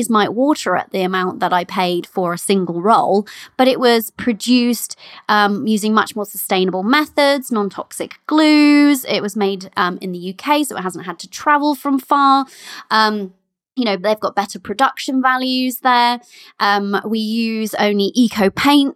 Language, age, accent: English, 20-39, British